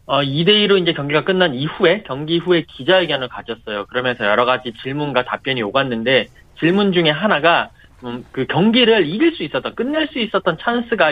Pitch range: 145-240 Hz